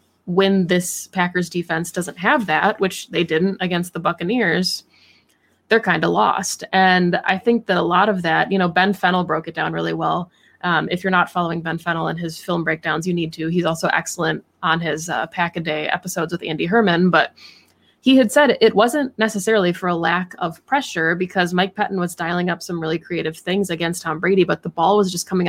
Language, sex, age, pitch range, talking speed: English, female, 20-39, 165-195 Hz, 215 wpm